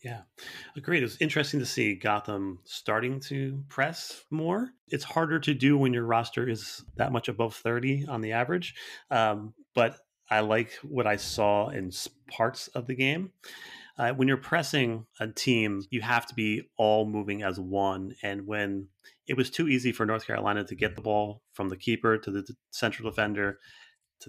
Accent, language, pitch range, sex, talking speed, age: American, English, 105-135 Hz, male, 185 wpm, 30-49